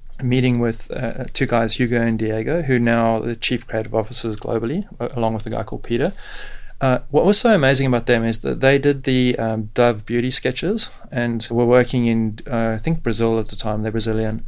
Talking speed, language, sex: 210 wpm, English, male